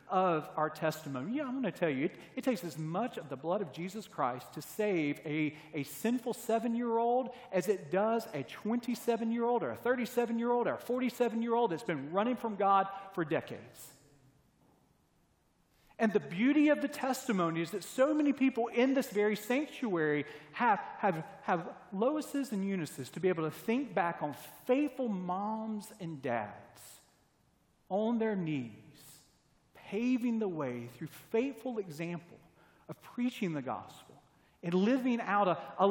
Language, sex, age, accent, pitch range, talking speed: English, male, 40-59, American, 160-245 Hz, 155 wpm